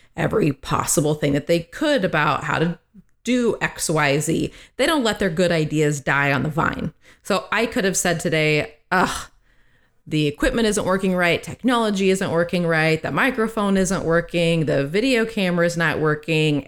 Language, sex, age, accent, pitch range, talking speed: English, female, 30-49, American, 155-190 Hz, 170 wpm